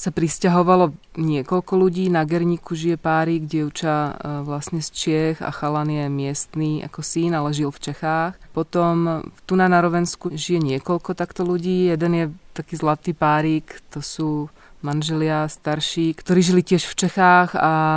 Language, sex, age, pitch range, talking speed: Czech, female, 20-39, 145-165 Hz, 155 wpm